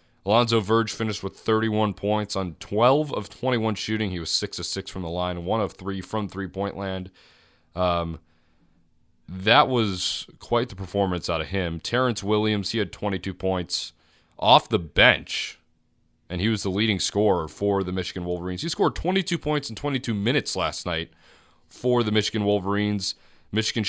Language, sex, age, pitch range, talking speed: English, male, 30-49, 95-110 Hz, 170 wpm